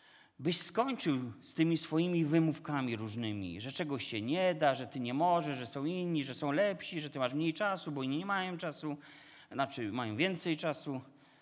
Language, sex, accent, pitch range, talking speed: Polish, male, native, 135-185 Hz, 190 wpm